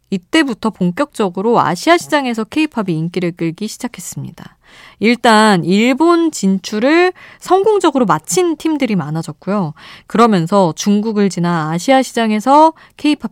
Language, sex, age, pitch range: Korean, female, 20-39, 160-255 Hz